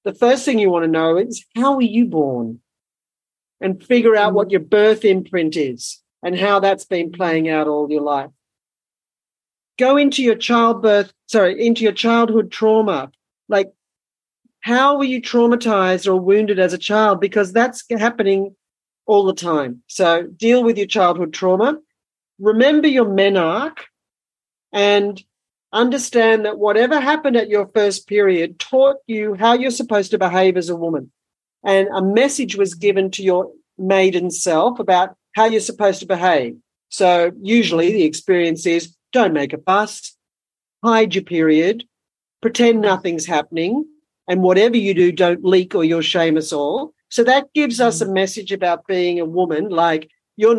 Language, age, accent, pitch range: English, 50-69, Australian, 175-230 Hz